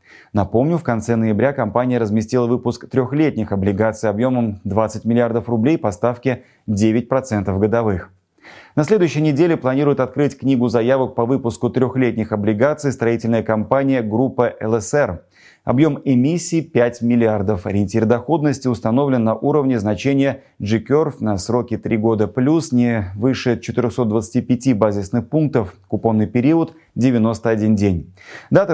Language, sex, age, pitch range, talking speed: Russian, male, 30-49, 110-140 Hz, 125 wpm